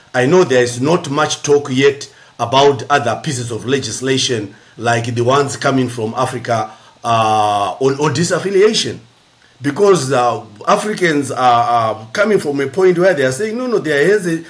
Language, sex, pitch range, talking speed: English, male, 120-165 Hz, 170 wpm